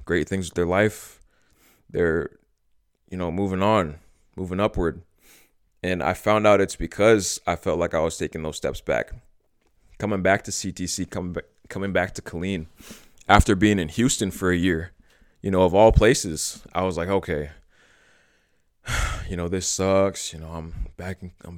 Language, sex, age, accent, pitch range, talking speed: English, male, 20-39, American, 90-105 Hz, 170 wpm